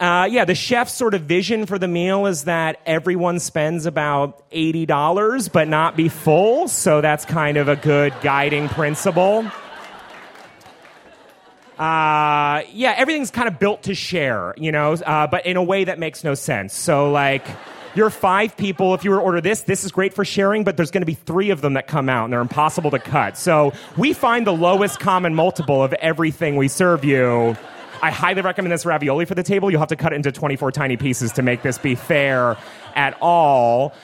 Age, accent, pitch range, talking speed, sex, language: 30-49, American, 140-190 Hz, 205 wpm, male, English